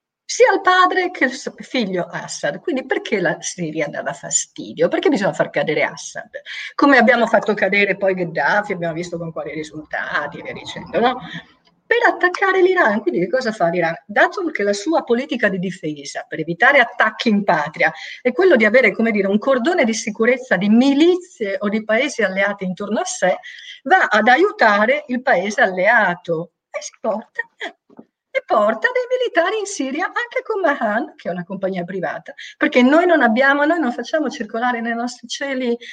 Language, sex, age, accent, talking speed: Italian, female, 50-69, native, 175 wpm